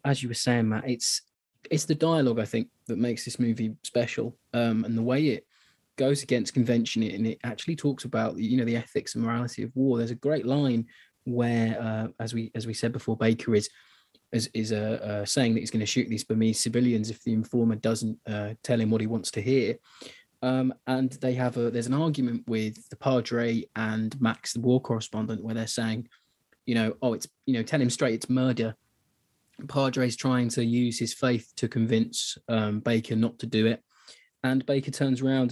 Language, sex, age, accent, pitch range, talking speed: English, male, 20-39, British, 115-130 Hz, 210 wpm